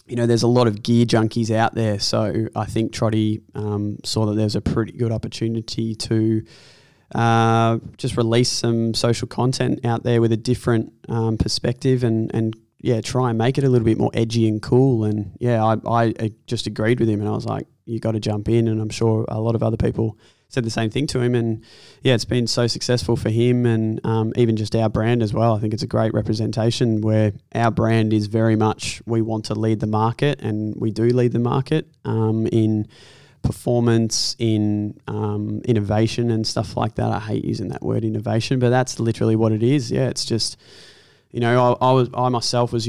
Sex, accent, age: male, Australian, 20-39